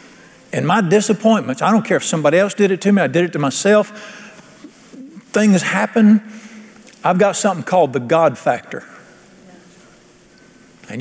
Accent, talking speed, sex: American, 155 wpm, male